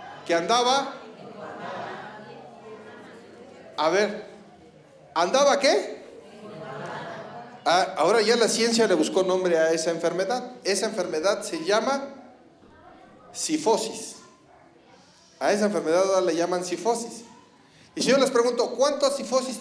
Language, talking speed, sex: Spanish, 110 wpm, male